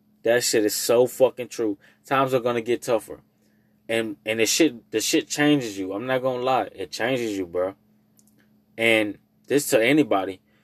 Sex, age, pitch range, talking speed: male, 20-39, 105-145 Hz, 185 wpm